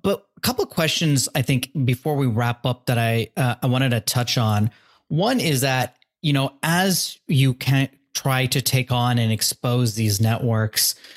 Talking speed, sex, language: 190 wpm, male, English